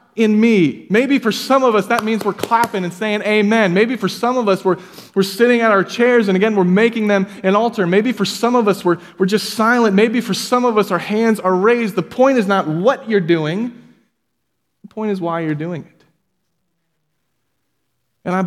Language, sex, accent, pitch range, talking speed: English, male, American, 140-205 Hz, 215 wpm